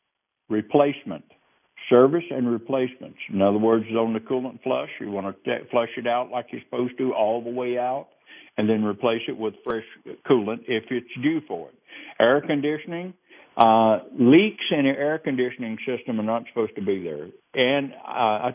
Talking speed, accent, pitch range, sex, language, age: 180 wpm, American, 110-150 Hz, male, English, 60-79